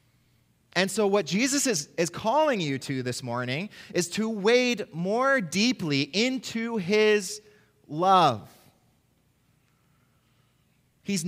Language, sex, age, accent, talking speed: English, male, 30-49, American, 105 wpm